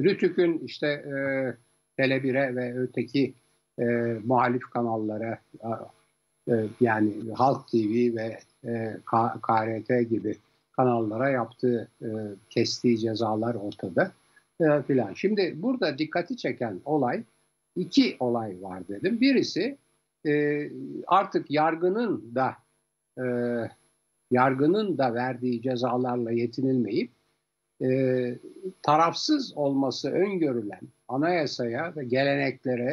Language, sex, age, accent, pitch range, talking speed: Turkish, male, 60-79, native, 115-150 Hz, 95 wpm